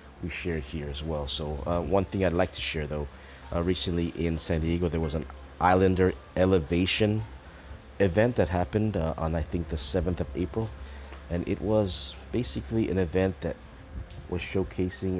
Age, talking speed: 30-49, 175 wpm